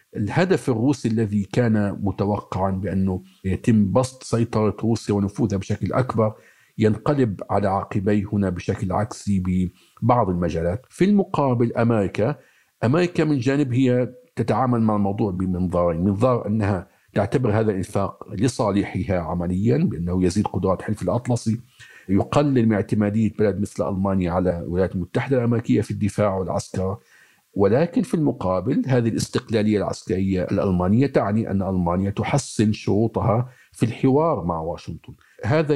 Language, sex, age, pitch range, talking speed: Arabic, male, 50-69, 100-125 Hz, 125 wpm